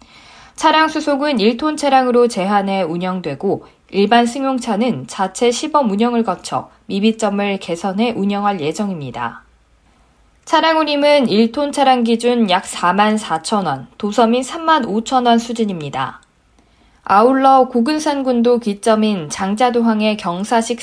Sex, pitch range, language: female, 205-270 Hz, Korean